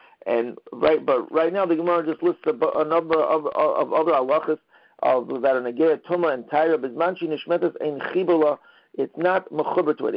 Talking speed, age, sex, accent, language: 190 wpm, 50-69, male, American, English